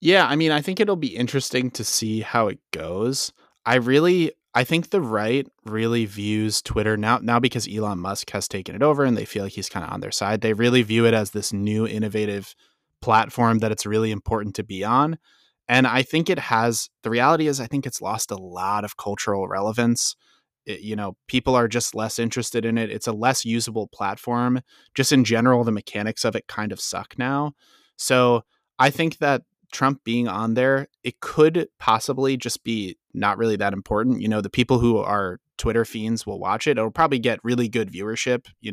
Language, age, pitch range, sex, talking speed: English, 20-39, 110-130 Hz, male, 210 wpm